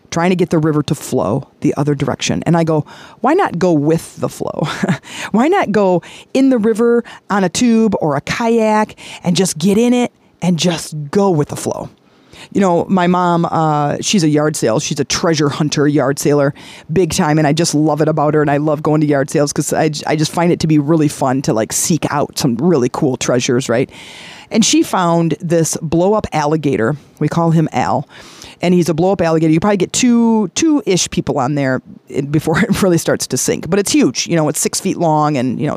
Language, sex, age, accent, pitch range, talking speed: English, female, 40-59, American, 150-190 Hz, 225 wpm